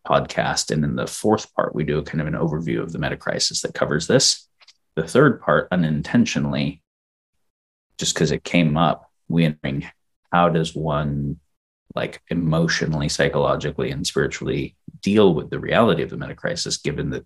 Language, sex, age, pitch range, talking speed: English, male, 30-49, 70-90 Hz, 165 wpm